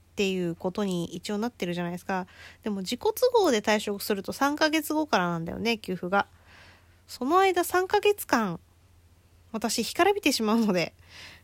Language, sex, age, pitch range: Japanese, female, 20-39, 180-245 Hz